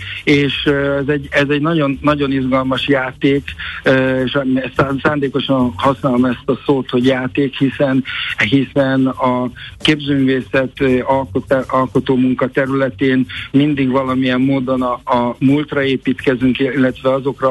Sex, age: male, 60-79